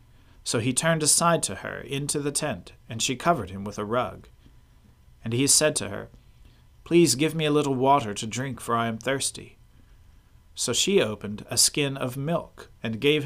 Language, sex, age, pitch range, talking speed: English, male, 40-59, 110-145 Hz, 190 wpm